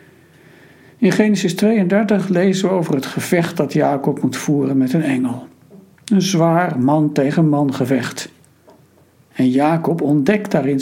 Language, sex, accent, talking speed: Dutch, male, Dutch, 130 wpm